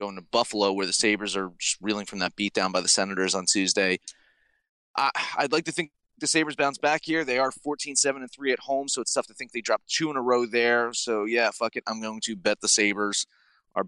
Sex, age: male, 30-49